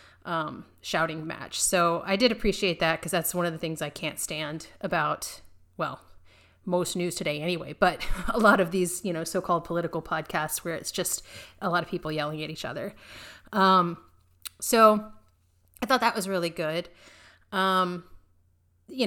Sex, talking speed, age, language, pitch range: female, 170 wpm, 30-49, English, 155-190 Hz